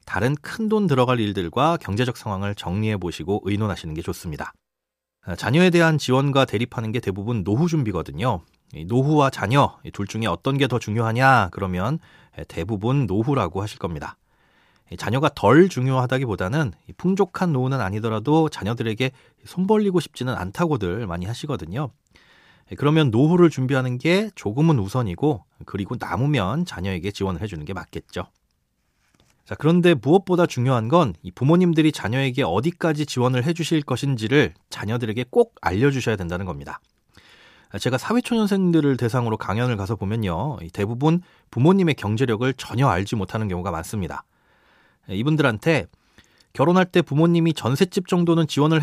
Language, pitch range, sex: Korean, 105-160 Hz, male